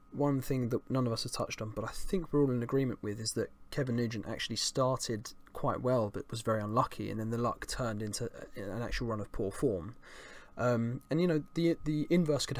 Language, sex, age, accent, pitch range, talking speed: English, male, 20-39, British, 110-140 Hz, 235 wpm